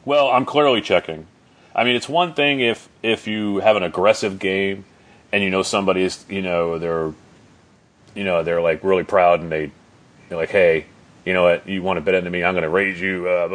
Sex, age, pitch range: male, 30-49, 85-105 Hz